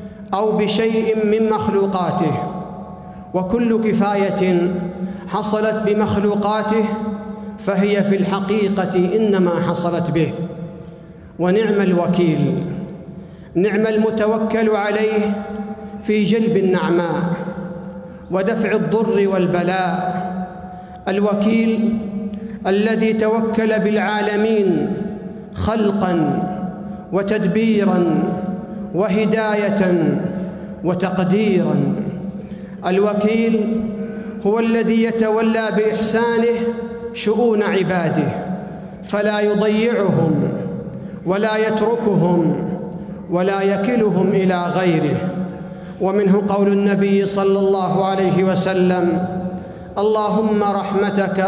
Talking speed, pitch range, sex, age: 65 wpm, 185-215 Hz, male, 50-69